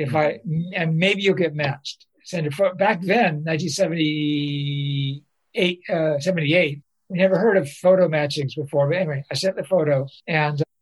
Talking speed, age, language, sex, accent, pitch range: 165 wpm, 60-79, English, male, American, 150-190 Hz